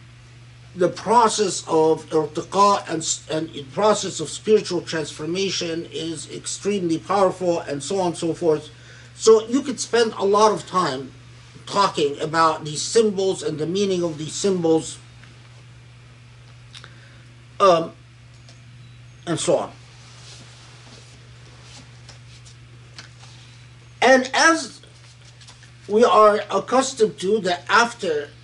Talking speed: 105 wpm